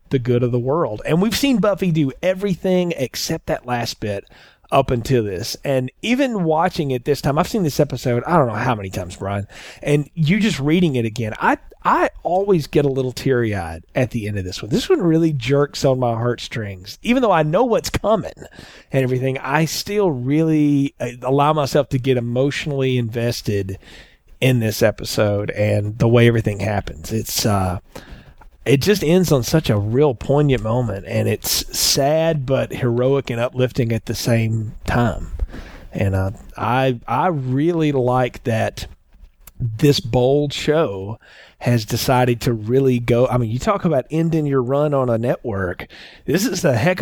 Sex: male